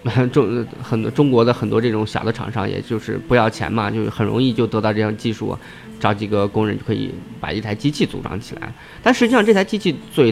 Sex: male